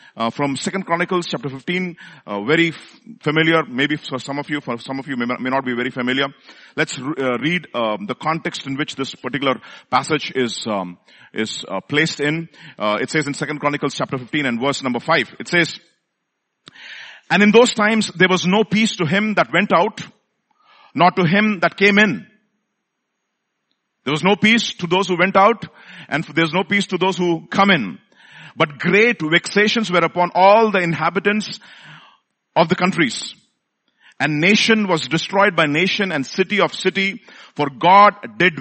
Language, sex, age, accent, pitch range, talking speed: English, male, 50-69, Indian, 140-195 Hz, 180 wpm